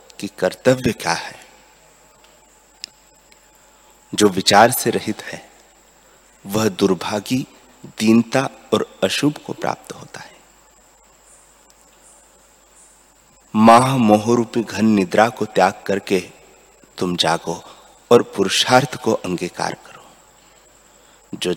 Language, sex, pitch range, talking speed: Hindi, male, 100-120 Hz, 90 wpm